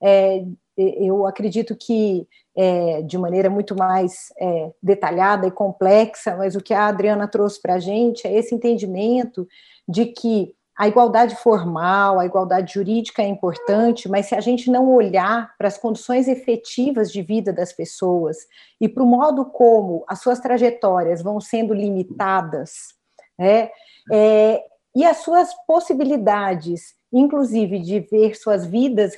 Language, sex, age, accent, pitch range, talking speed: Portuguese, female, 40-59, Brazilian, 195-240 Hz, 140 wpm